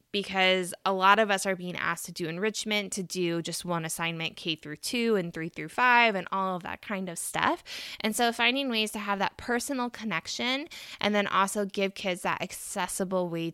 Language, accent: English, American